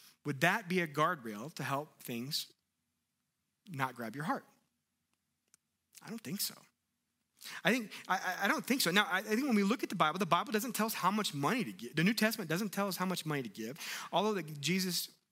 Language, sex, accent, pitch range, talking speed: English, male, American, 130-180 Hz, 220 wpm